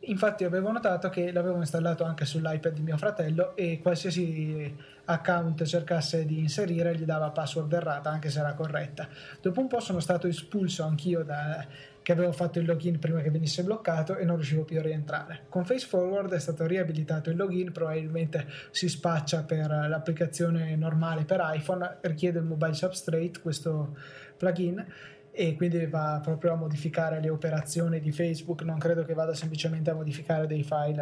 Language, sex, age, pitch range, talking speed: Italian, male, 20-39, 155-175 Hz, 170 wpm